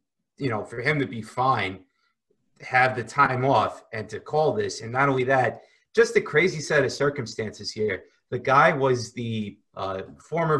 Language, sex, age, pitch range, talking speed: English, male, 30-49, 115-140 Hz, 180 wpm